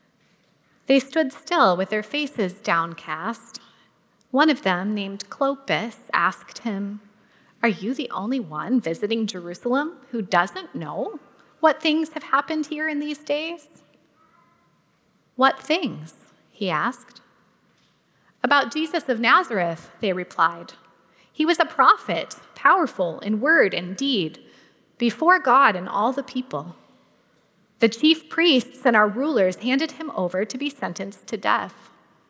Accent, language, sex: American, English, female